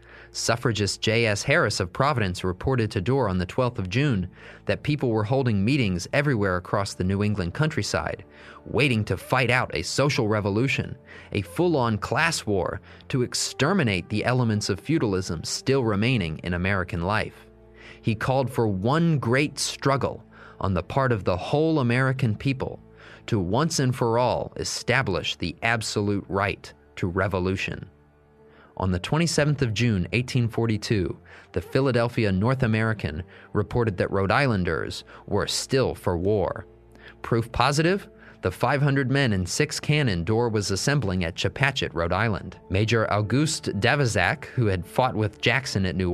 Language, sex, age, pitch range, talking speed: English, male, 30-49, 95-130 Hz, 150 wpm